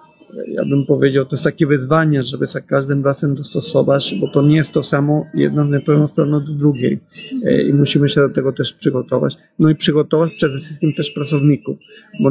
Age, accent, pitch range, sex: 50-69, native, 135-155 Hz, male